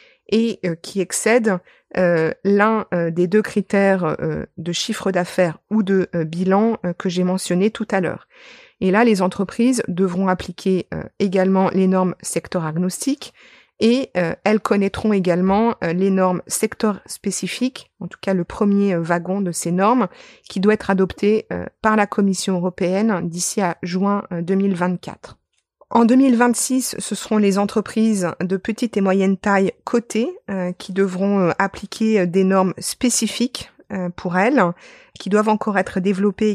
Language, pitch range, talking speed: French, 185-215 Hz, 160 wpm